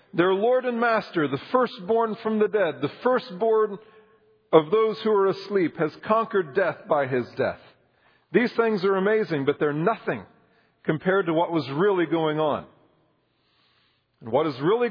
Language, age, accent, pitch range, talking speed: English, 40-59, American, 155-210 Hz, 160 wpm